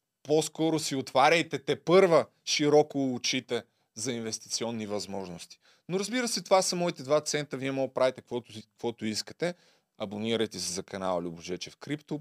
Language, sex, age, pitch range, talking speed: Bulgarian, male, 30-49, 130-175 Hz, 150 wpm